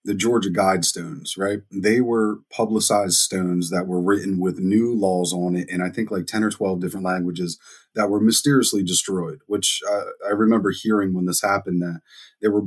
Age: 30-49